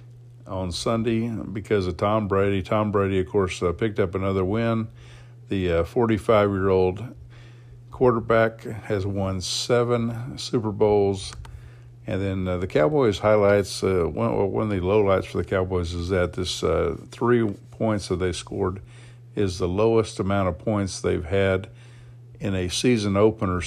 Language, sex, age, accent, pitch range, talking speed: English, male, 50-69, American, 95-120 Hz, 155 wpm